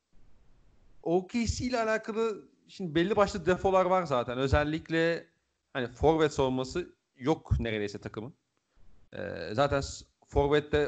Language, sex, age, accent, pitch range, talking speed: Turkish, male, 40-59, native, 120-170 Hz, 105 wpm